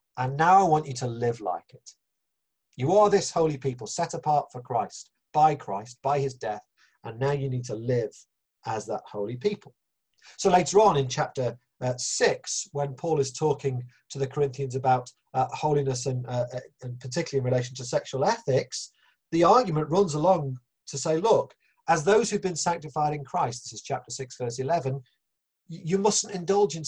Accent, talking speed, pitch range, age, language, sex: British, 190 wpm, 125-160 Hz, 40-59, English, male